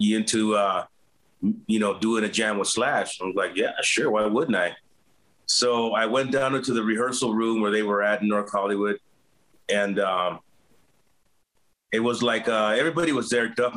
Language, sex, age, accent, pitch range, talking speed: English, male, 30-49, American, 105-120 Hz, 190 wpm